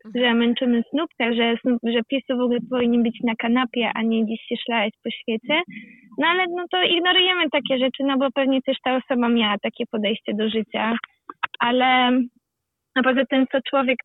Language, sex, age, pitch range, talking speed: Polish, female, 20-39, 230-275 Hz, 180 wpm